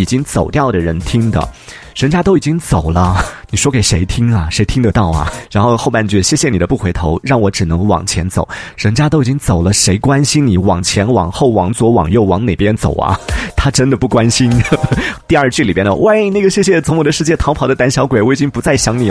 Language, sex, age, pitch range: Chinese, male, 30-49, 105-150 Hz